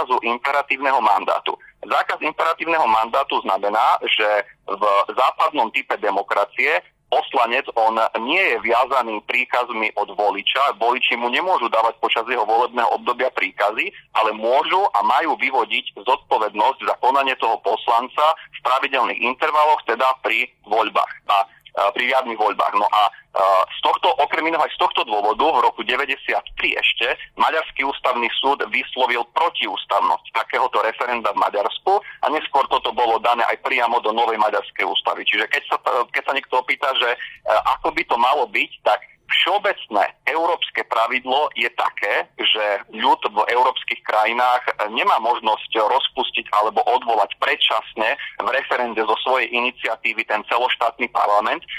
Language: Slovak